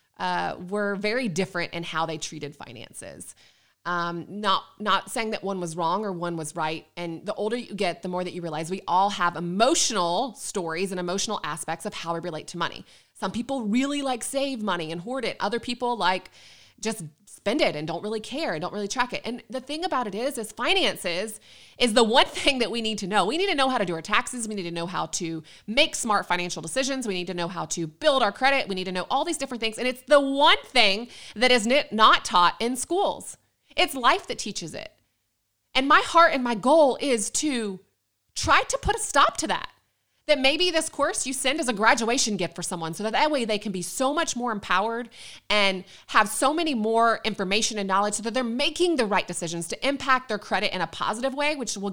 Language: English